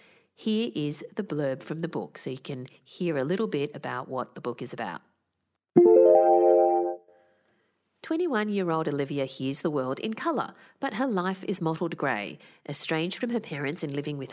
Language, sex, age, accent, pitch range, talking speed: English, female, 40-59, Australian, 140-200 Hz, 170 wpm